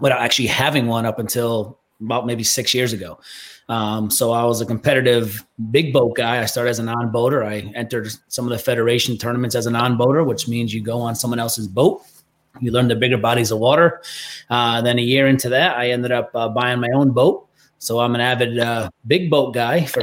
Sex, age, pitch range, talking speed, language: male, 30-49, 115-135 Hz, 220 wpm, English